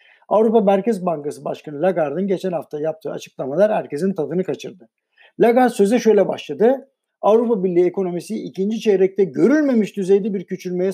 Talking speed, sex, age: 135 wpm, male, 60-79